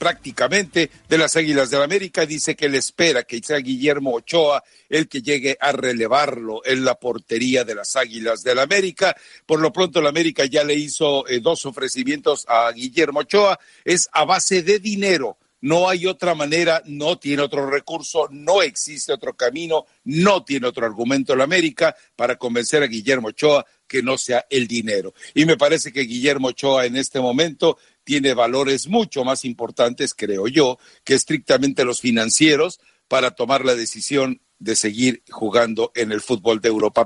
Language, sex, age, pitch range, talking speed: Spanish, male, 60-79, 120-160 Hz, 175 wpm